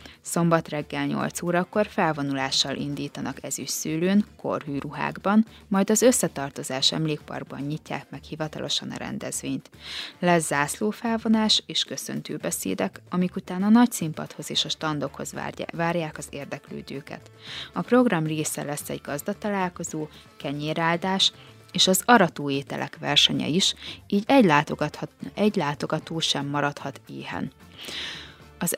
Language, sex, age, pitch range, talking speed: Hungarian, female, 20-39, 145-195 Hz, 115 wpm